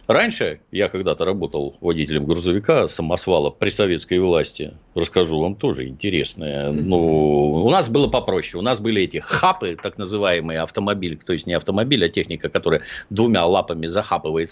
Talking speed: 155 wpm